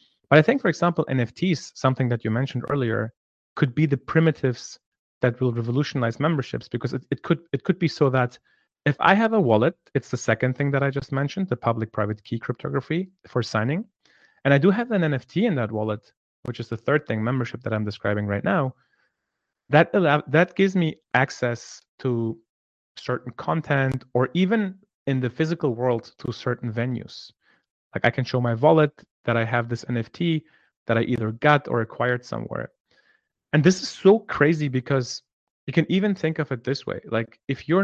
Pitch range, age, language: 120-155 Hz, 30-49, English